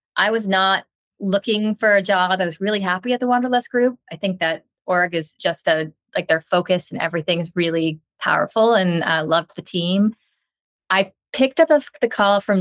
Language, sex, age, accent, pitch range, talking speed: English, female, 20-39, American, 170-220 Hz, 205 wpm